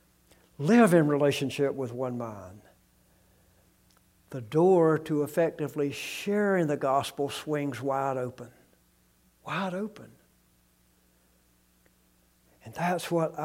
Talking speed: 95 wpm